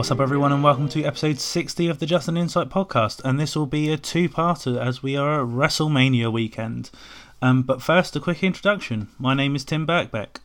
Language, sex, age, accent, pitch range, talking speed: English, male, 20-39, British, 120-145 Hz, 205 wpm